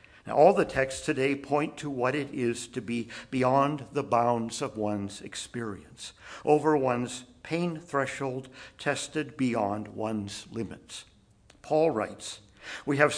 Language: English